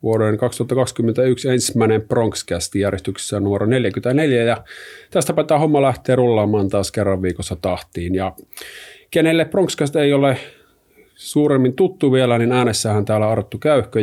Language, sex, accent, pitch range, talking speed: Finnish, male, native, 100-130 Hz, 130 wpm